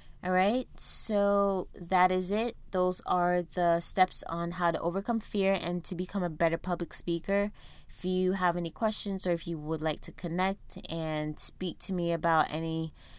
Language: English